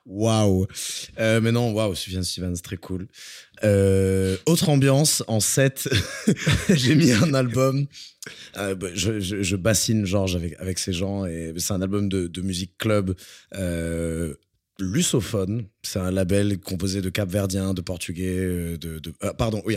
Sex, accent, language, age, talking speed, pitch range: male, French, French, 20-39, 155 wpm, 95-110 Hz